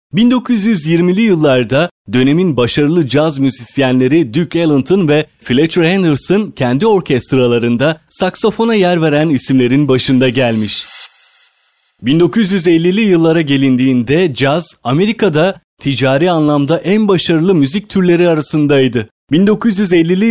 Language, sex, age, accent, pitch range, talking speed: Turkish, male, 30-49, native, 130-175 Hz, 95 wpm